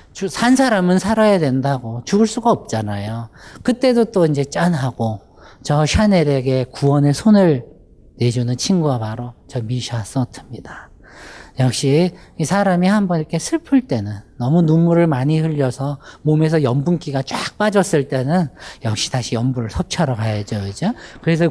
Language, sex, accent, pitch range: Korean, male, native, 120-170 Hz